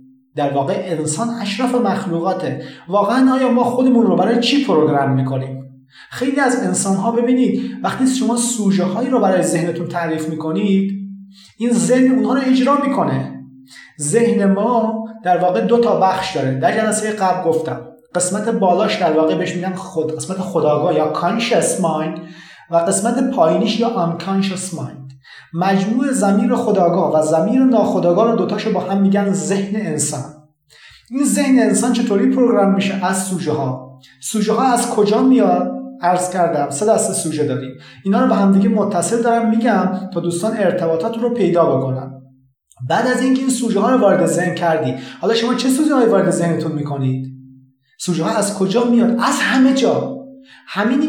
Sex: male